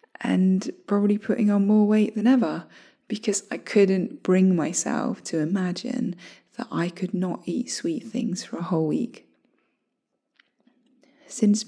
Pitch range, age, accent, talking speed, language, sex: 185-250 Hz, 20-39, British, 140 wpm, English, female